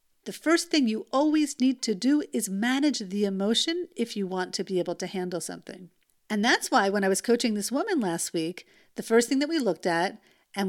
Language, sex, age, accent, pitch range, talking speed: English, female, 50-69, American, 195-265 Hz, 225 wpm